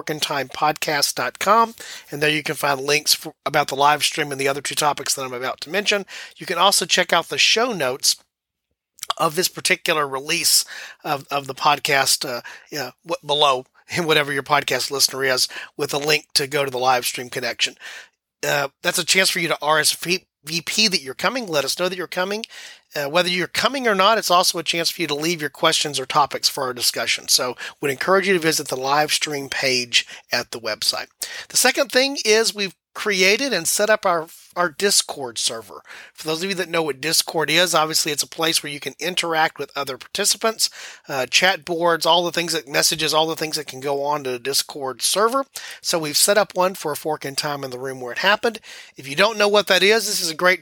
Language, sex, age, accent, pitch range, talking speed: English, male, 40-59, American, 140-180 Hz, 225 wpm